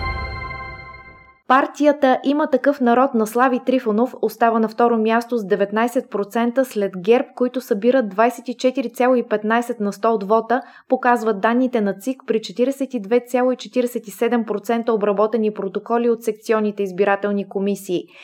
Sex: female